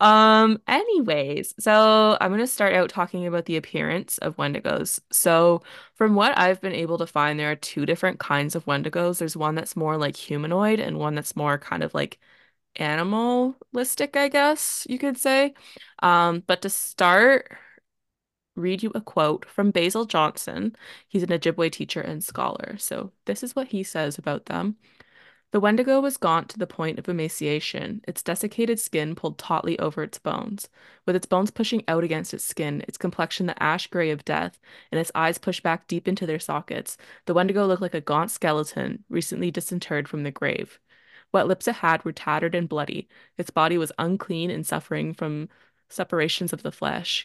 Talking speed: 185 wpm